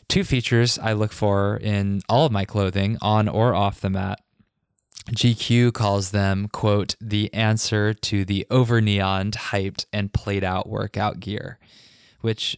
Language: English